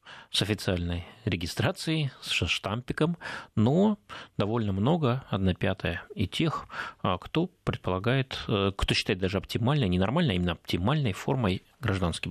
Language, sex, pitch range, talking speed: Russian, male, 95-120 Hz, 115 wpm